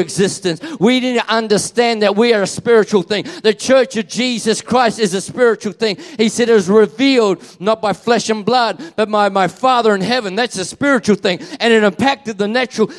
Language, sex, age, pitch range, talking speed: English, male, 40-59, 135-215 Hz, 210 wpm